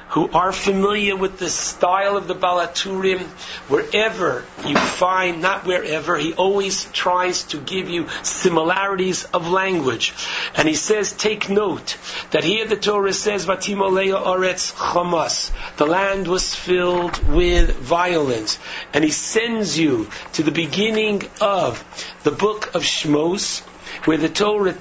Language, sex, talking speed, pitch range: English, male, 130 wpm, 175-195 Hz